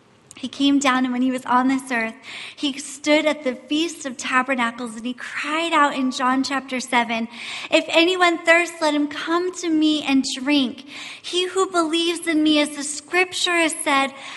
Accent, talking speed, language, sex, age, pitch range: American, 190 wpm, English, female, 30-49, 275-340 Hz